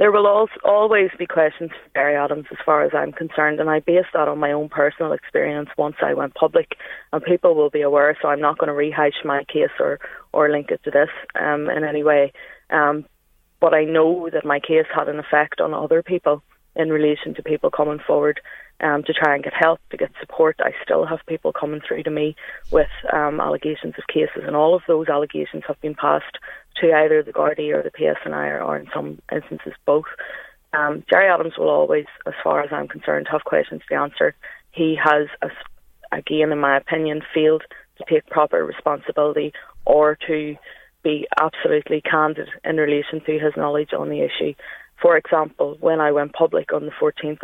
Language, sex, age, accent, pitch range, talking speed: English, female, 20-39, Irish, 150-165 Hz, 200 wpm